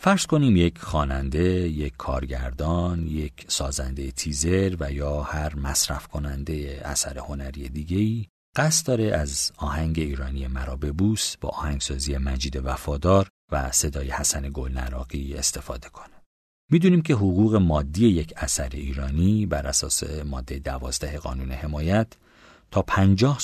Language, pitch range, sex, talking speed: Persian, 70-90 Hz, male, 130 wpm